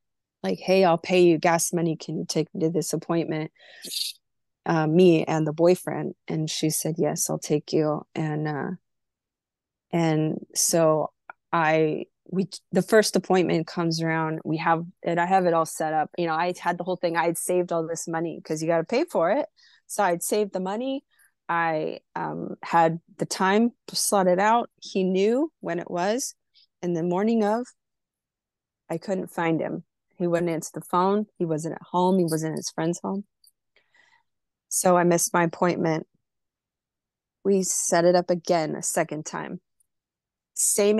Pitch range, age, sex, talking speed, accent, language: 165-195 Hz, 20-39, female, 175 wpm, American, English